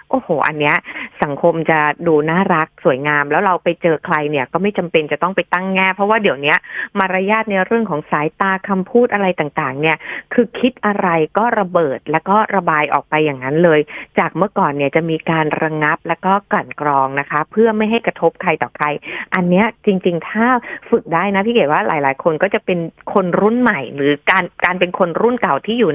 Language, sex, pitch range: Thai, female, 160-210 Hz